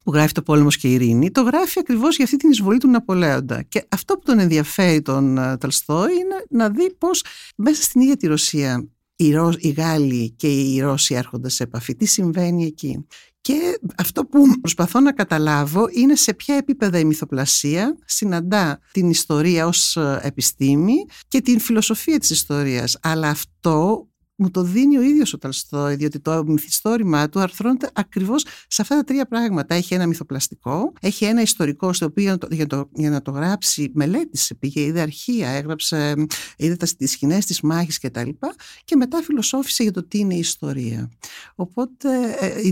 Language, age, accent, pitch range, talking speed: Greek, 60-79, native, 145-225 Hz, 175 wpm